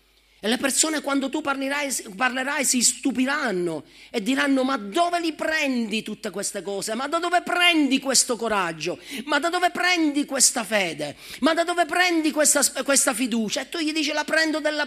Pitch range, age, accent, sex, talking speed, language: 265-310 Hz, 40-59, native, male, 180 wpm, Italian